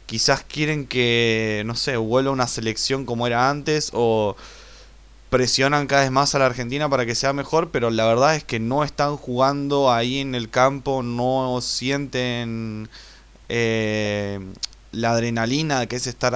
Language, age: Spanish, 20-39